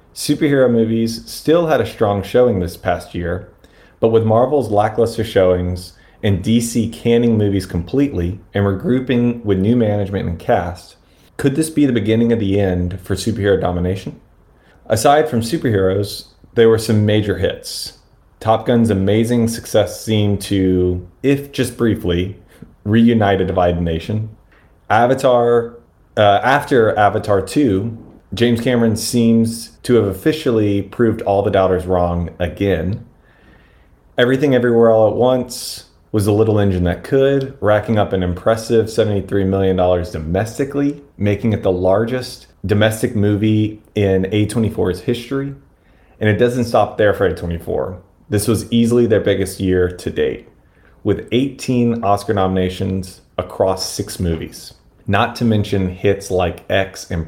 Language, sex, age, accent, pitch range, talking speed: English, male, 30-49, American, 90-115 Hz, 140 wpm